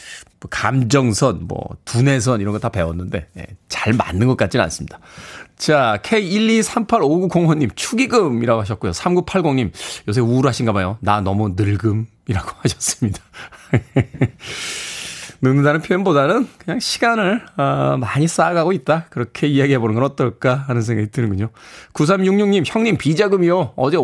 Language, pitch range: Korean, 105-155 Hz